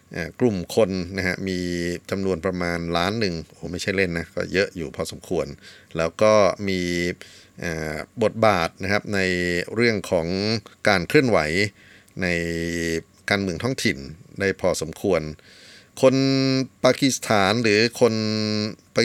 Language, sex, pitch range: Thai, male, 90-110 Hz